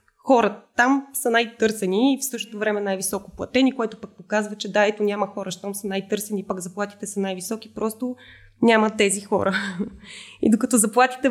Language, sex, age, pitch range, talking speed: Bulgarian, female, 20-39, 200-240 Hz, 170 wpm